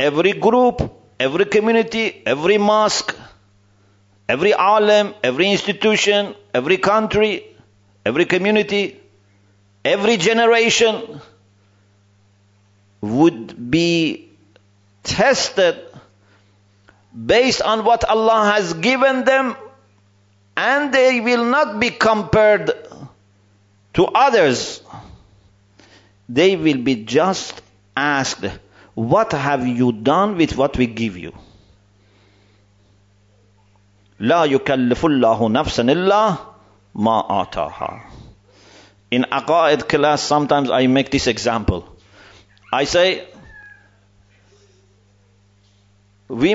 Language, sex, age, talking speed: English, male, 50-69, 85 wpm